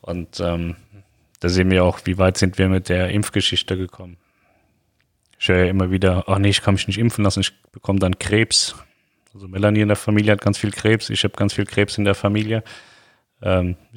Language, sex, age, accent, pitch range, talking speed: German, male, 30-49, German, 95-105 Hz, 210 wpm